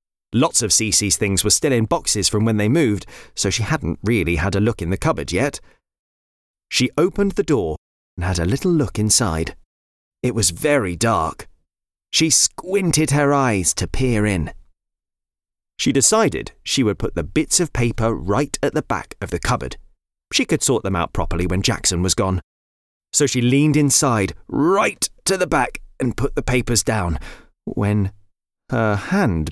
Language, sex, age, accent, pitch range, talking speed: English, male, 30-49, British, 85-135 Hz, 175 wpm